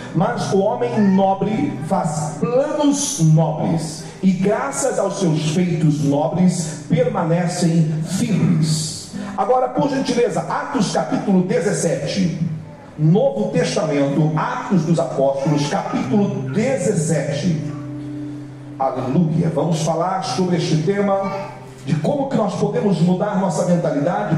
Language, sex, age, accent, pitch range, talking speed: Portuguese, male, 40-59, Brazilian, 155-200 Hz, 105 wpm